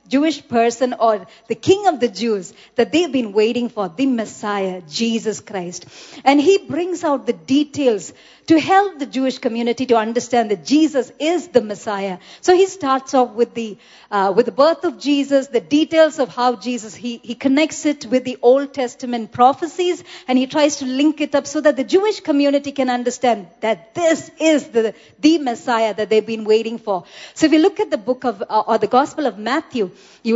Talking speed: 200 wpm